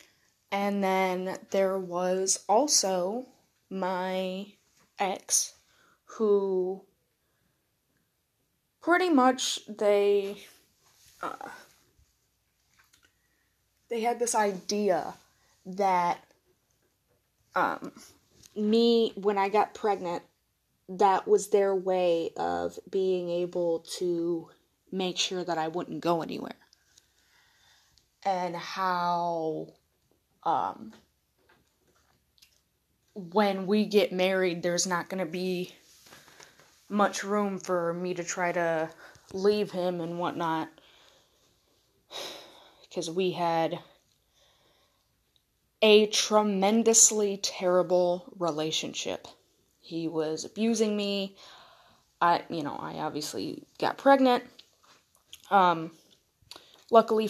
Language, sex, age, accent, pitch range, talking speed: English, female, 20-39, American, 175-210 Hz, 85 wpm